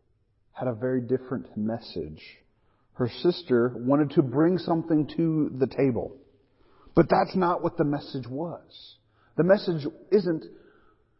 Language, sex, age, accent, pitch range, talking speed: English, male, 40-59, American, 110-150 Hz, 130 wpm